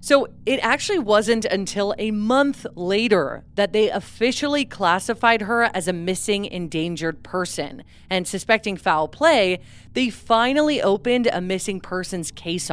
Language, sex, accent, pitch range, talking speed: English, female, American, 170-235 Hz, 135 wpm